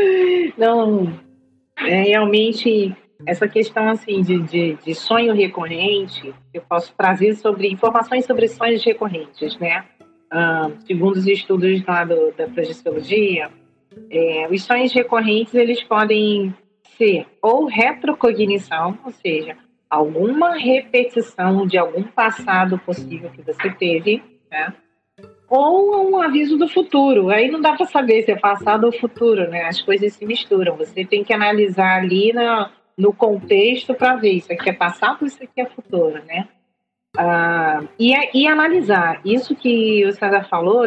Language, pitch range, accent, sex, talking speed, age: Portuguese, 180-240 Hz, Brazilian, female, 130 wpm, 40-59